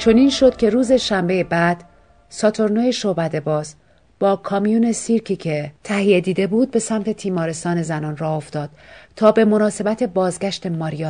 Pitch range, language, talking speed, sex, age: 160-215 Hz, Persian, 150 wpm, female, 40-59